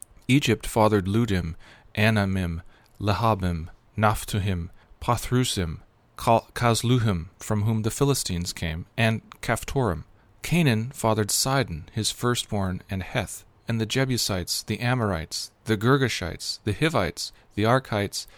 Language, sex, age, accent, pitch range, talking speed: English, male, 40-59, American, 100-125 Hz, 110 wpm